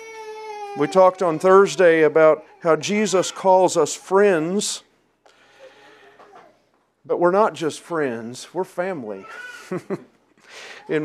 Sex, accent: male, American